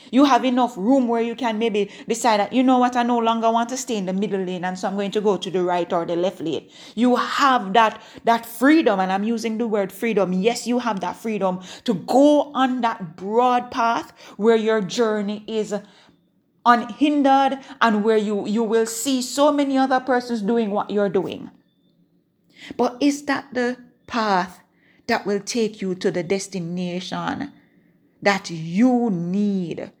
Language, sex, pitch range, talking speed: English, female, 195-250 Hz, 185 wpm